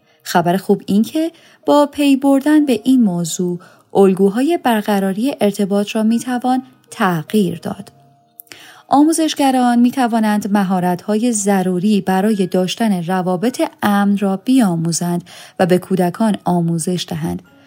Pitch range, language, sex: 180-250 Hz, Persian, female